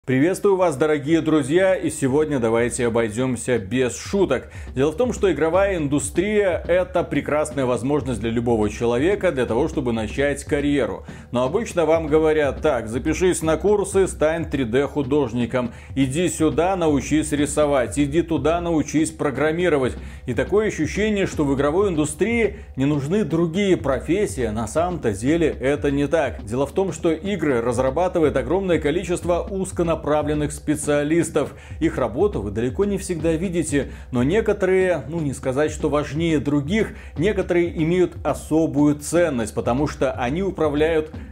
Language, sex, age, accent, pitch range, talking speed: Russian, male, 30-49, native, 130-170 Hz, 140 wpm